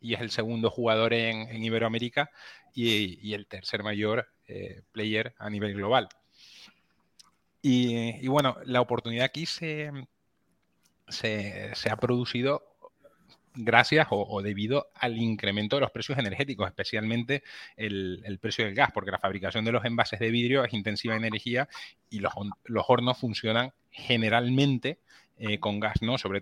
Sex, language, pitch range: male, Spanish, 110-125 Hz